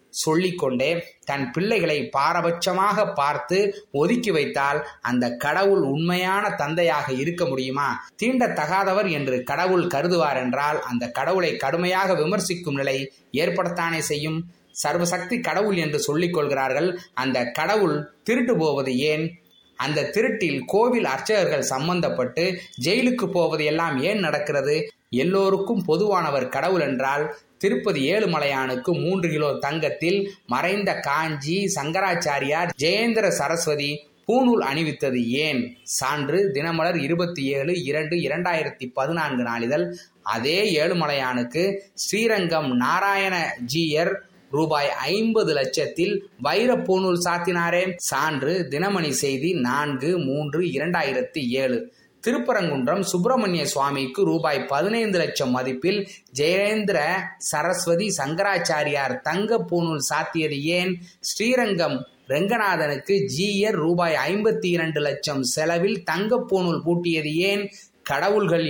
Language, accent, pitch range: Tamil, native, 145-195 Hz